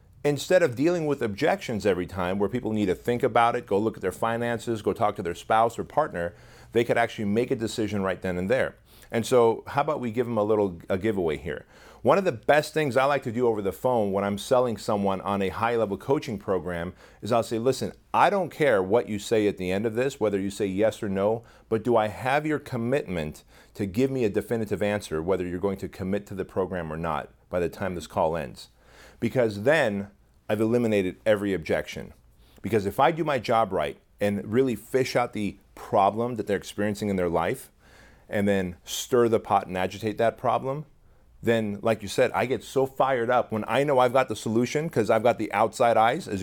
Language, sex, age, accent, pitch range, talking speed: English, male, 40-59, American, 100-125 Hz, 225 wpm